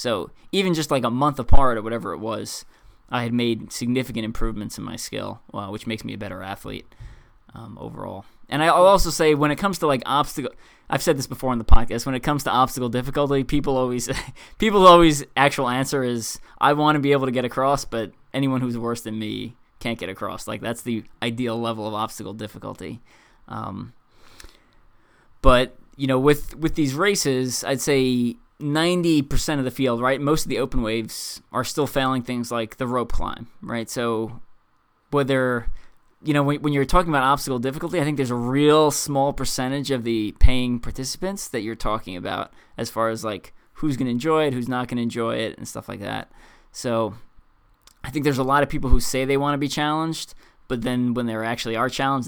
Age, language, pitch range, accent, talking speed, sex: 20-39, English, 115-145 Hz, American, 210 wpm, male